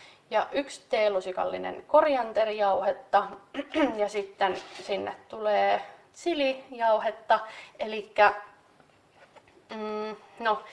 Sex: female